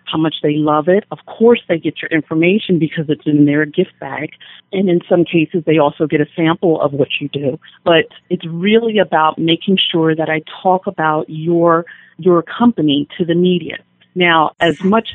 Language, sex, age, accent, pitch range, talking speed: English, female, 40-59, American, 150-180 Hz, 195 wpm